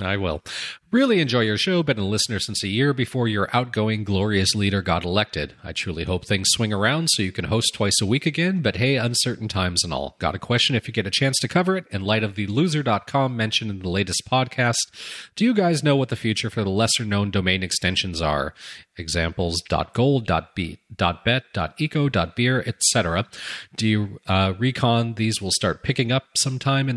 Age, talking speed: 40-59, 200 wpm